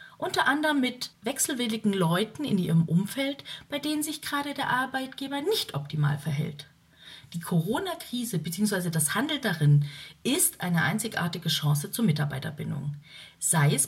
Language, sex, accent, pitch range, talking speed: German, female, German, 155-225 Hz, 135 wpm